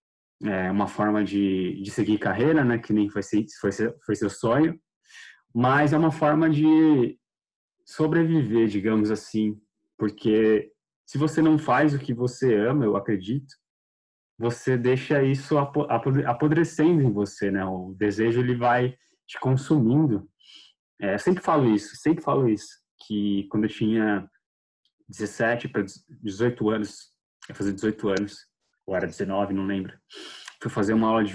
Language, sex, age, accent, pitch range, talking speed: Portuguese, male, 20-39, Brazilian, 105-140 Hz, 140 wpm